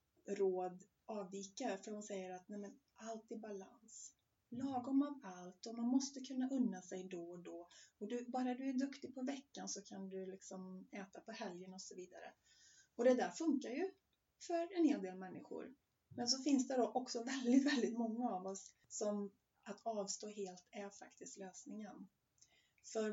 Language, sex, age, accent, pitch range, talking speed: Swedish, female, 30-49, native, 190-235 Hz, 180 wpm